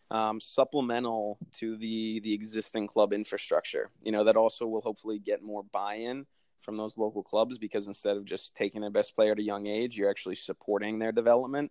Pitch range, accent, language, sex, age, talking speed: 105-115 Hz, American, English, male, 20-39, 195 wpm